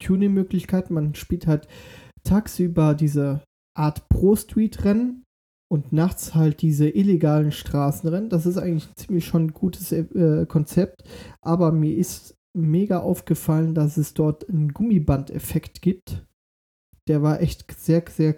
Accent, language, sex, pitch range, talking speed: German, German, male, 150-180 Hz, 125 wpm